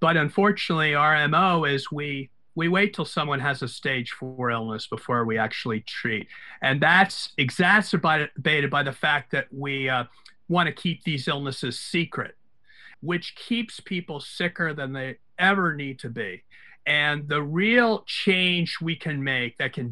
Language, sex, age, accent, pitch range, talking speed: English, male, 50-69, American, 135-175 Hz, 155 wpm